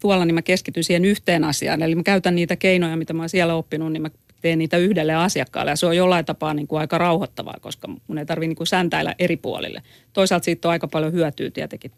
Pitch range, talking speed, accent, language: 155-175 Hz, 240 wpm, native, Finnish